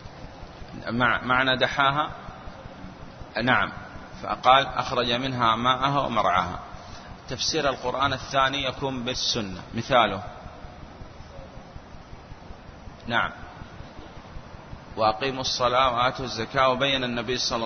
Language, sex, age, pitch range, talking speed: Arabic, male, 30-49, 115-135 Hz, 75 wpm